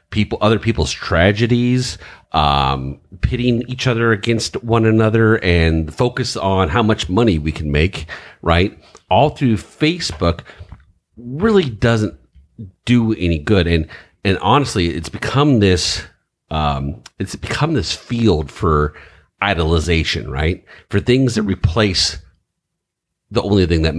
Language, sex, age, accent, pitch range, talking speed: English, male, 40-59, American, 85-115 Hz, 130 wpm